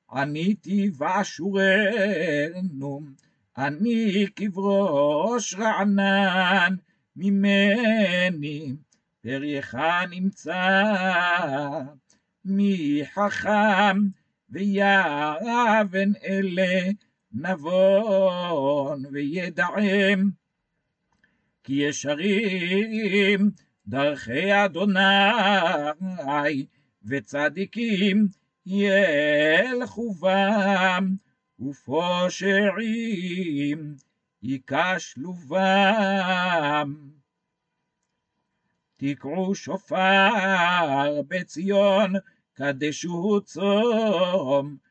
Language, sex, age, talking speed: Hebrew, male, 60-79, 40 wpm